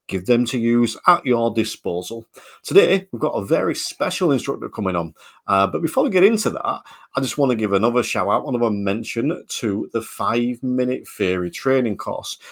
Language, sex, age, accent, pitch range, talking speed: English, male, 40-59, British, 100-130 Hz, 200 wpm